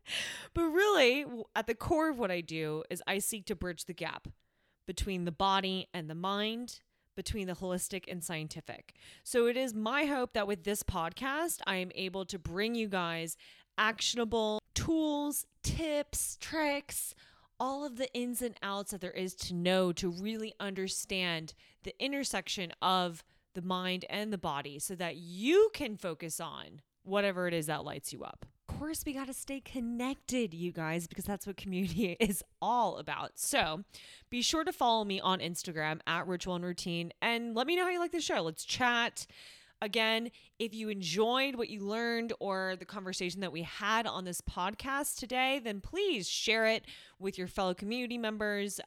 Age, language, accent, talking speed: 20-39, English, American, 180 wpm